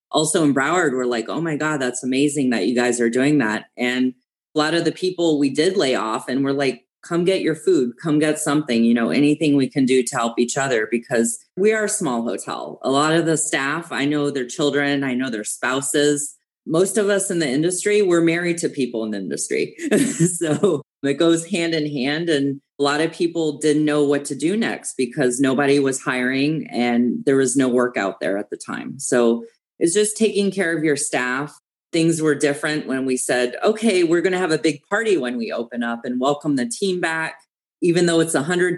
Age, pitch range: 30-49, 130-170 Hz